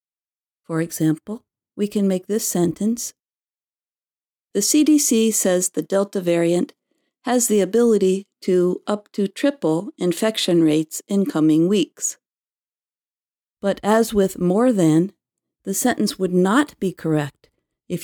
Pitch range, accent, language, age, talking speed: 170-225 Hz, American, English, 50-69, 125 wpm